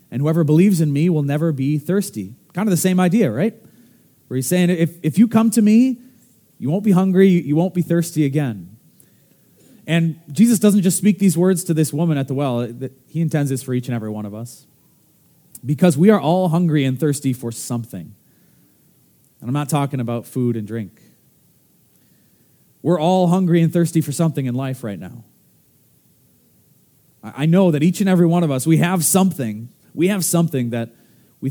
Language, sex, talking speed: English, male, 190 wpm